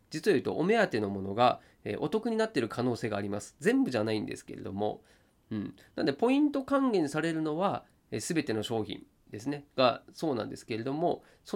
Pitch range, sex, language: 110-180 Hz, male, Japanese